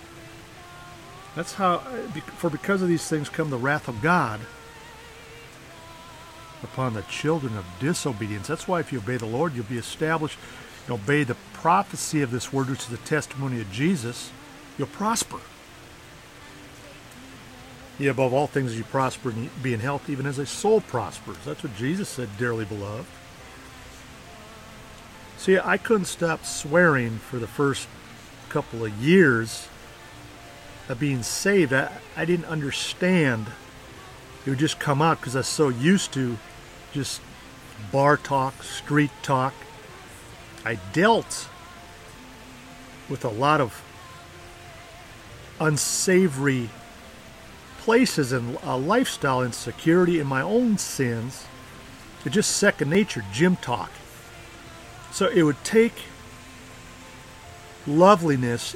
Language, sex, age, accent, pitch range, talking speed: English, male, 50-69, American, 115-155 Hz, 125 wpm